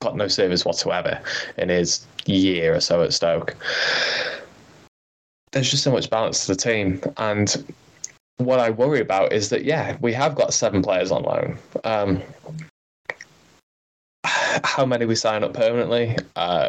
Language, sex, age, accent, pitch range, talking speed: English, male, 10-29, British, 95-120 Hz, 145 wpm